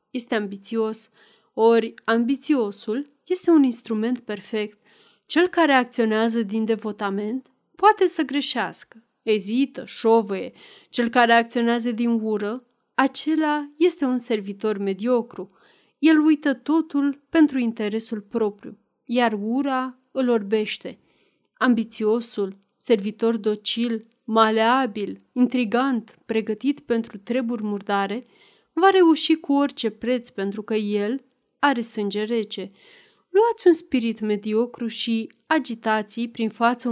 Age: 30-49